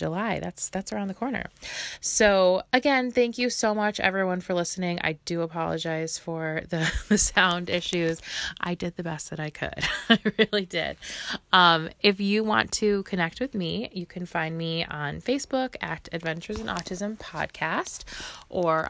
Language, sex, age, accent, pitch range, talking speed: English, female, 20-39, American, 160-205 Hz, 170 wpm